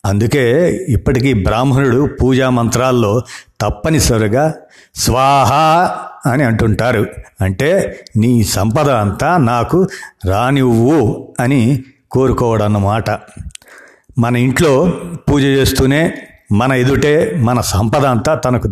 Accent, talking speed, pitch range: native, 85 wpm, 110-140 Hz